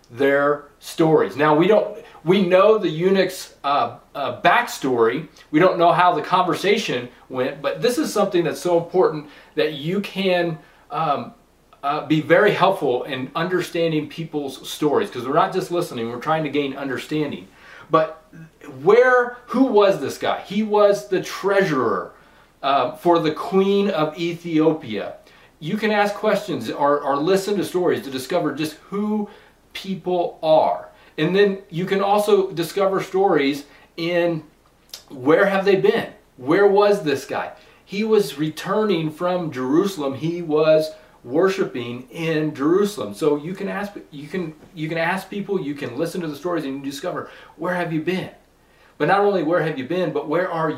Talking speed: 165 wpm